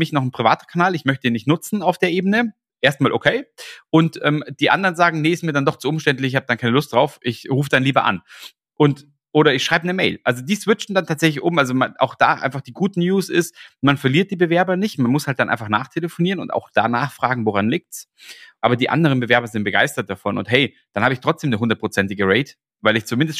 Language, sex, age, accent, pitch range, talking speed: German, male, 30-49, German, 120-160 Hz, 245 wpm